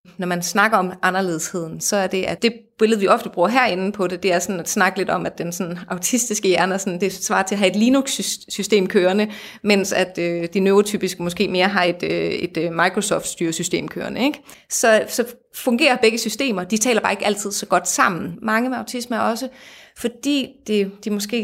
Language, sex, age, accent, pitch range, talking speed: Danish, female, 30-49, native, 185-225 Hz, 205 wpm